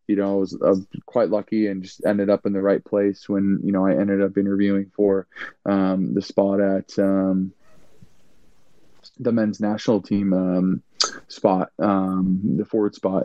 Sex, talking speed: male, 170 wpm